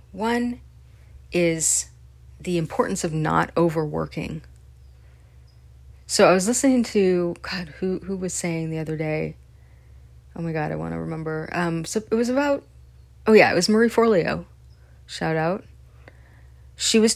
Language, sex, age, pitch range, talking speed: English, female, 30-49, 140-180 Hz, 145 wpm